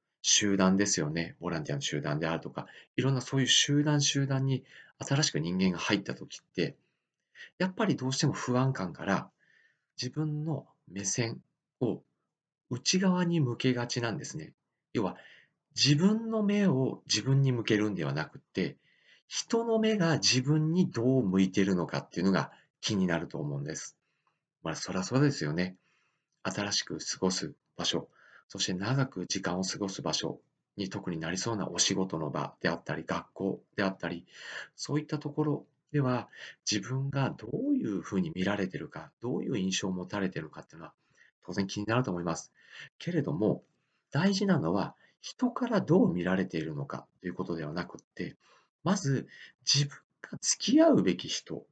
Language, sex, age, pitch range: Japanese, male, 40-59, 95-155 Hz